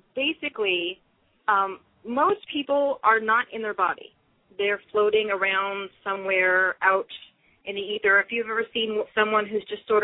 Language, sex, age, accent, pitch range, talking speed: English, female, 30-49, American, 190-225 Hz, 150 wpm